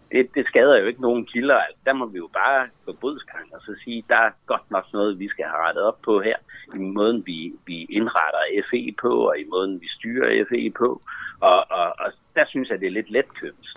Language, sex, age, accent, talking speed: Danish, male, 60-79, native, 225 wpm